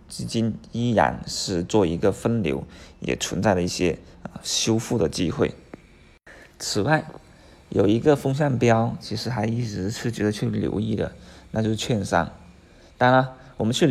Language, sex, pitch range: Chinese, male, 90-120 Hz